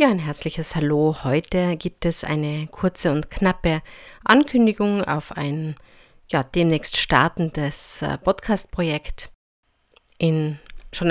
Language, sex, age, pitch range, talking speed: German, female, 50-69, 155-190 Hz, 110 wpm